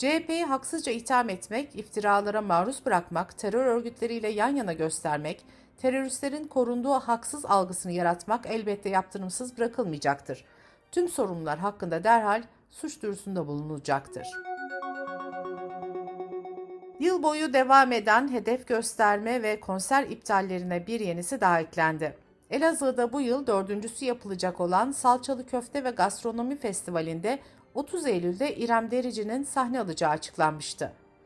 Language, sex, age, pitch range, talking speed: Turkish, female, 60-79, 185-260 Hz, 110 wpm